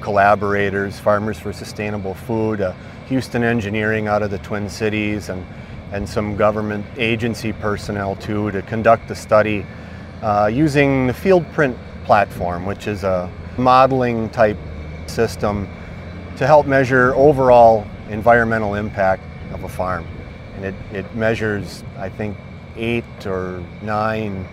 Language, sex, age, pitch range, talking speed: English, male, 30-49, 100-130 Hz, 130 wpm